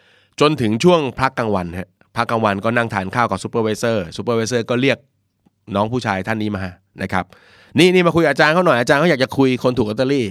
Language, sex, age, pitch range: Thai, male, 30-49, 95-120 Hz